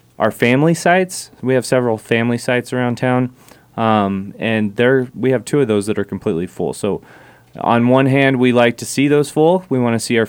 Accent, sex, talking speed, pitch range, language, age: American, male, 215 wpm, 105-125 Hz, English, 30-49